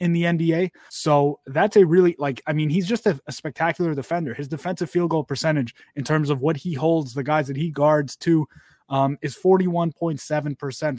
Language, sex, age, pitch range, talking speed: English, male, 20-39, 140-165 Hz, 195 wpm